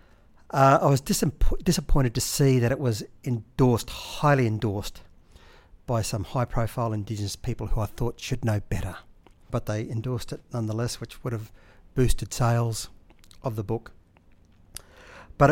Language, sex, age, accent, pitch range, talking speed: English, male, 60-79, Australian, 105-135 Hz, 145 wpm